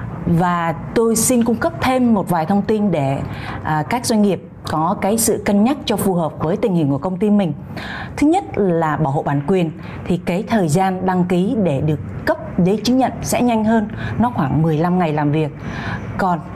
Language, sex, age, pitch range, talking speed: Vietnamese, female, 20-39, 165-220 Hz, 215 wpm